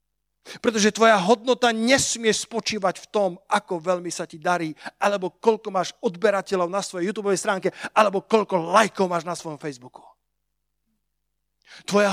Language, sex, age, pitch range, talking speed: Slovak, male, 40-59, 175-220 Hz, 140 wpm